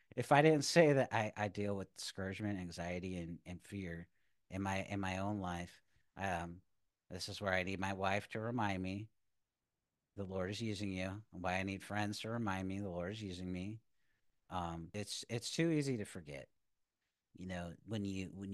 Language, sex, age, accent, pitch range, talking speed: English, male, 40-59, American, 95-115 Hz, 195 wpm